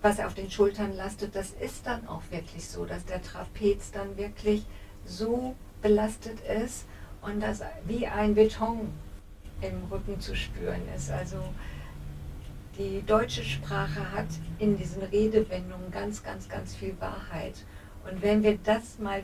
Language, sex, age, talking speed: German, female, 50-69, 150 wpm